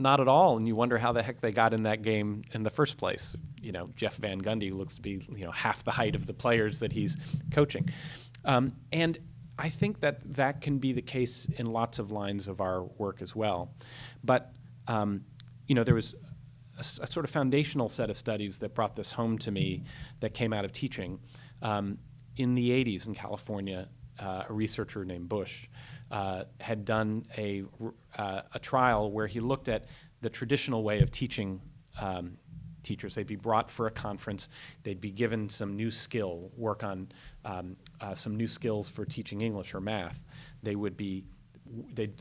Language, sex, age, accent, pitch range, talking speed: English, male, 40-59, American, 105-135 Hz, 195 wpm